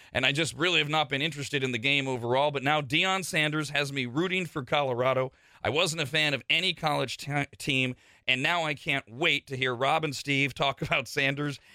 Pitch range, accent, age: 130-165 Hz, American, 40-59